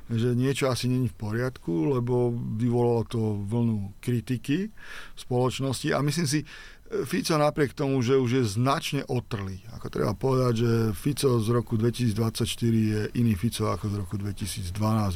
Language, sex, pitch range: Slovak, male, 115-135 Hz